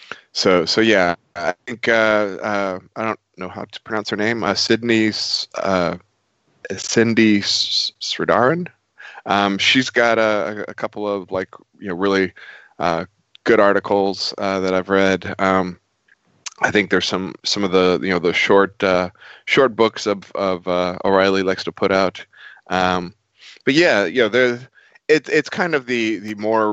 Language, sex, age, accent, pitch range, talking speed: English, male, 20-39, American, 95-110 Hz, 165 wpm